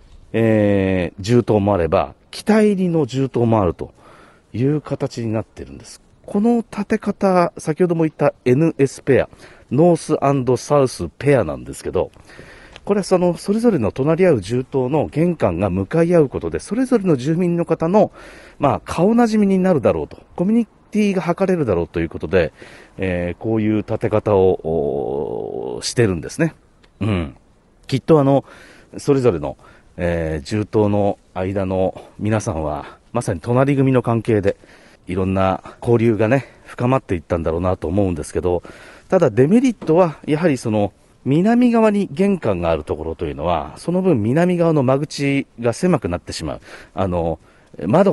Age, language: 40-59, Japanese